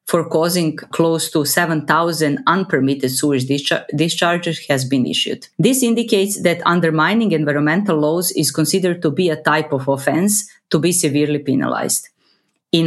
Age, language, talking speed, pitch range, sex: 30-49, English, 140 wpm, 145-190 Hz, female